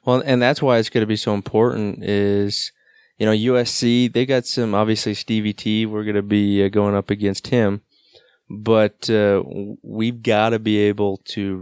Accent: American